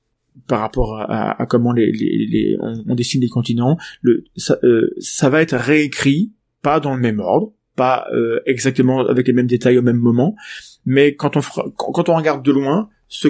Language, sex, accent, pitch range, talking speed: French, male, French, 120-150 Hz, 210 wpm